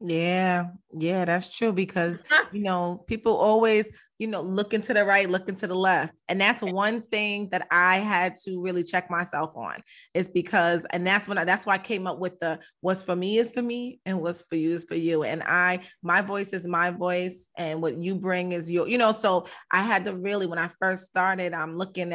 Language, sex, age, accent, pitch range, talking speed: English, female, 30-49, American, 175-195 Hz, 225 wpm